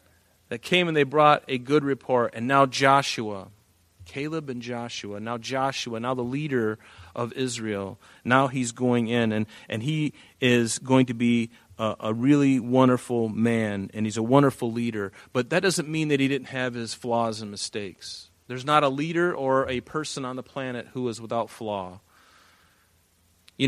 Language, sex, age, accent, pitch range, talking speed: English, male, 40-59, American, 115-155 Hz, 175 wpm